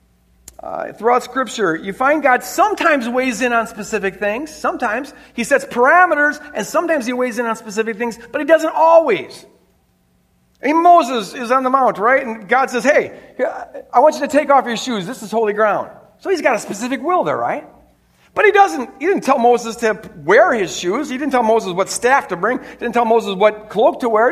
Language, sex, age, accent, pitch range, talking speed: English, male, 50-69, American, 210-275 Hz, 210 wpm